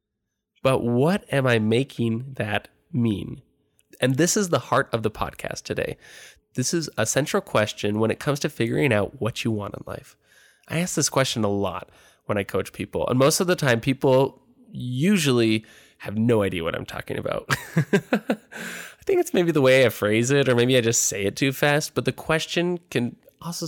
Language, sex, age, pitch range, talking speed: English, male, 20-39, 110-150 Hz, 200 wpm